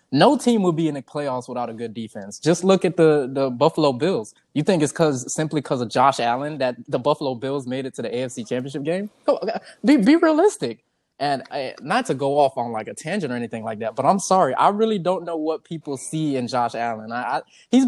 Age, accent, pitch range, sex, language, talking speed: 20-39, American, 130-180 Hz, male, English, 245 wpm